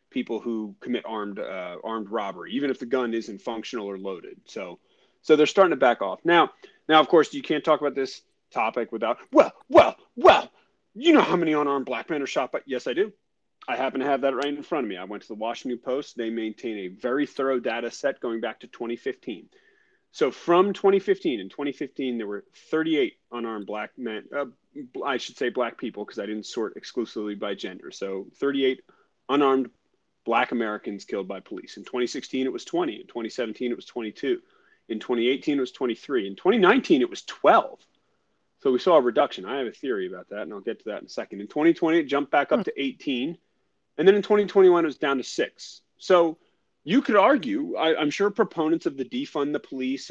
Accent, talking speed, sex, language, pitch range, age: American, 210 wpm, male, English, 120-180 Hz, 30-49